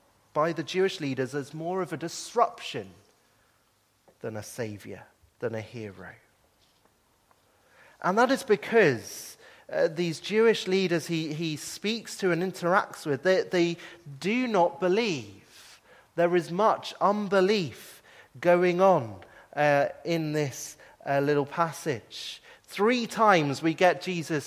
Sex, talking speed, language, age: male, 130 wpm, English, 30-49